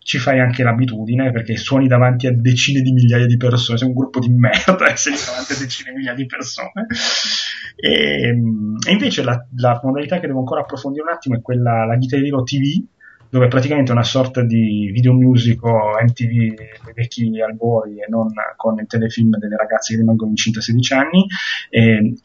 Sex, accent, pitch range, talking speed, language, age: male, native, 115-135 Hz, 195 wpm, Italian, 30-49